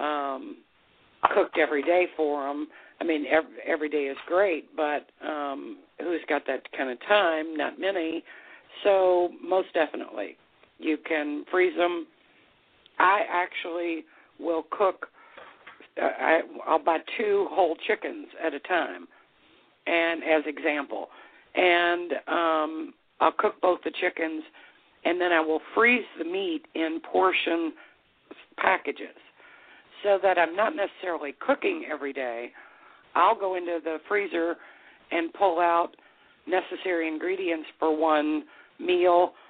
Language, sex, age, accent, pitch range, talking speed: English, female, 50-69, American, 155-195 Hz, 125 wpm